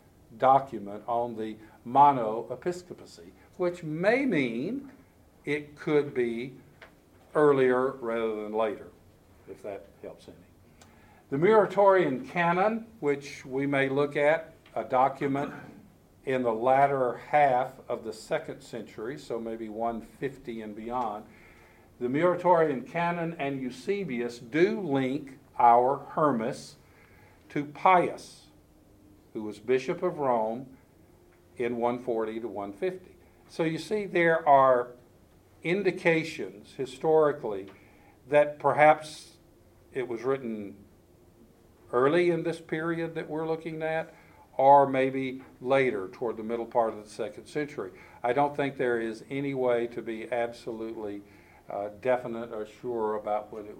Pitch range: 110-150 Hz